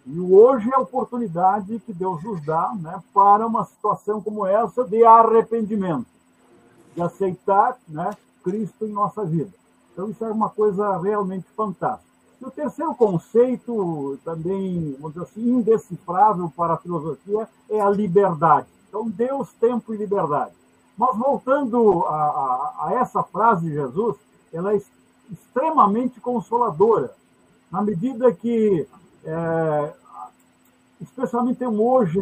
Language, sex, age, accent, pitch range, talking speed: Portuguese, male, 60-79, Brazilian, 195-245 Hz, 130 wpm